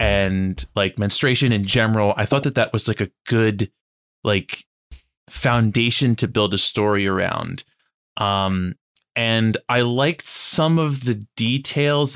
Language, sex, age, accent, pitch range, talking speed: English, male, 20-39, American, 110-140 Hz, 140 wpm